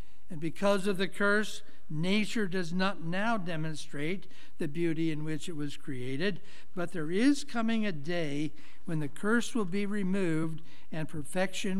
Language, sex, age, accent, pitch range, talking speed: English, male, 60-79, American, 140-185 Hz, 160 wpm